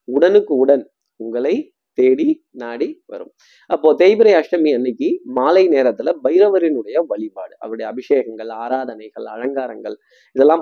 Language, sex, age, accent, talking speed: Tamil, male, 20-39, native, 115 wpm